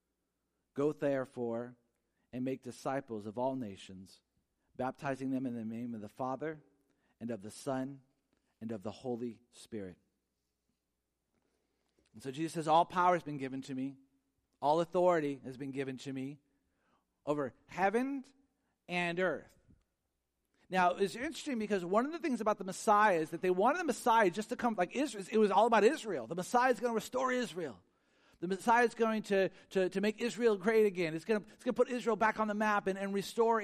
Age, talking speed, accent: 40-59, 185 wpm, American